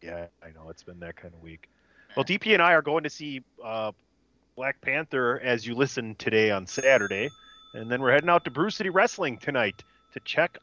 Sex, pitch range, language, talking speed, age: male, 110-145 Hz, English, 215 wpm, 30-49